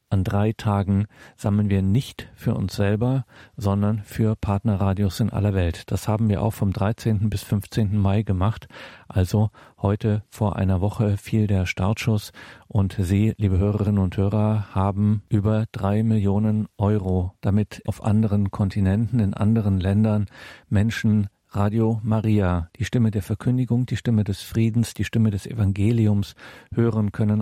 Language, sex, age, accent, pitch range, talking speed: German, male, 40-59, German, 100-115 Hz, 150 wpm